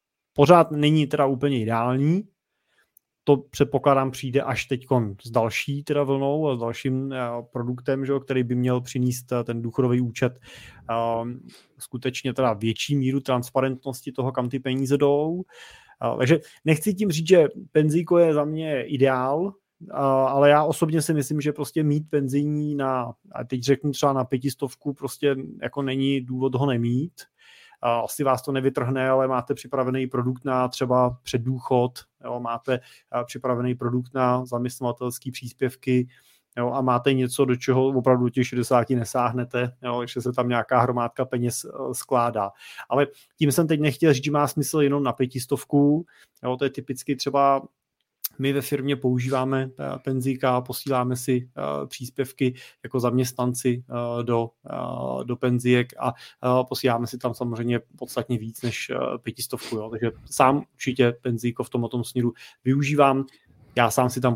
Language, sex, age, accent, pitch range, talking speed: Czech, male, 20-39, native, 120-140 Hz, 150 wpm